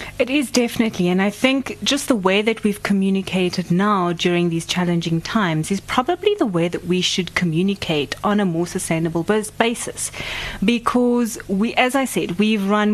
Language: English